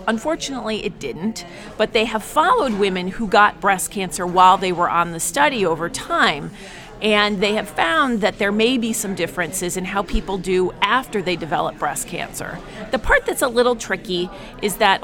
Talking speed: 190 wpm